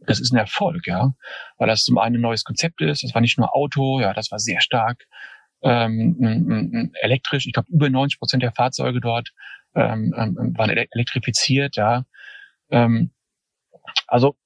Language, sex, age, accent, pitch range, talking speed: German, male, 40-59, German, 115-145 Hz, 160 wpm